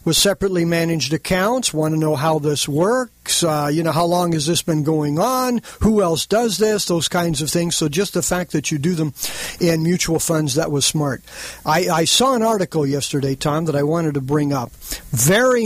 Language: English